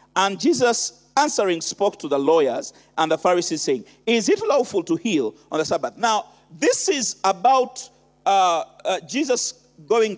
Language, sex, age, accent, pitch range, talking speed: English, male, 50-69, Nigerian, 210-315 Hz, 160 wpm